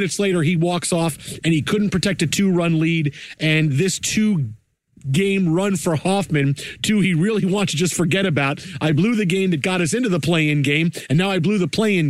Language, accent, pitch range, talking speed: English, American, 150-195 Hz, 225 wpm